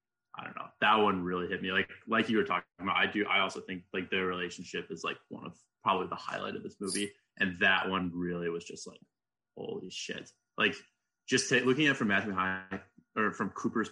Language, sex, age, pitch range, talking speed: English, male, 20-39, 90-105 Hz, 230 wpm